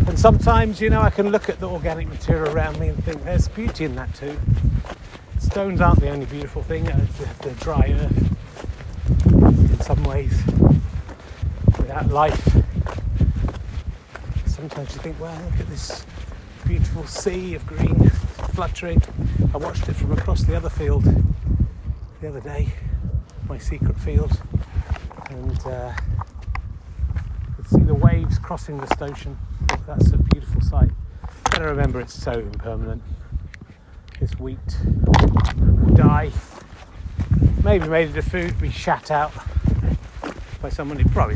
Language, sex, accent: English, male, British